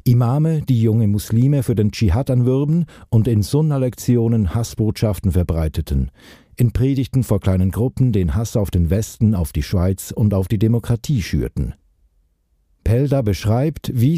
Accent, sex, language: German, male, German